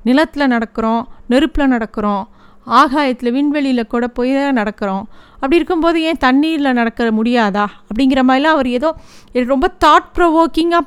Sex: female